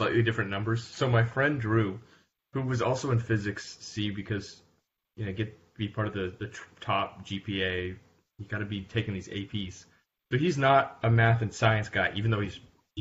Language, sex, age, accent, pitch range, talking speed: English, male, 20-39, American, 95-120 Hz, 190 wpm